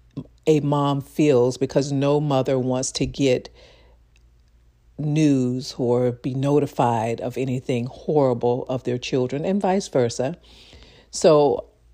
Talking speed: 115 wpm